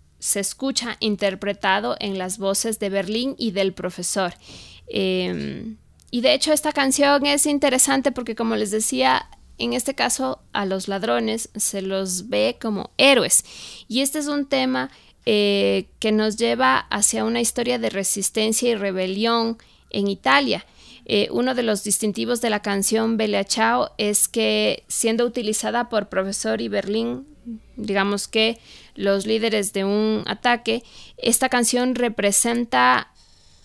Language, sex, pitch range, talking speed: Spanish, female, 195-235 Hz, 145 wpm